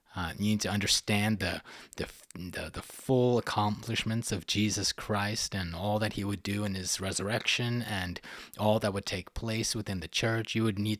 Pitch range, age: 90-110 Hz, 30-49